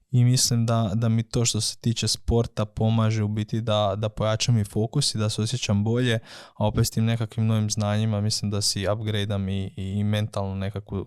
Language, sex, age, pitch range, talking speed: Croatian, male, 20-39, 105-115 Hz, 195 wpm